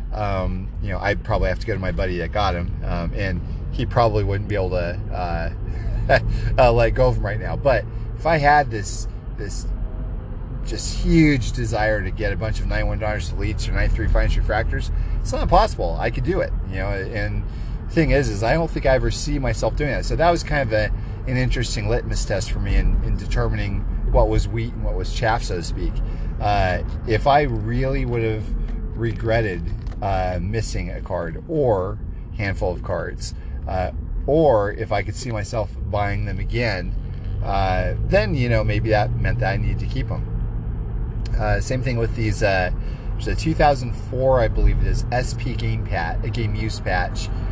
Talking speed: 195 wpm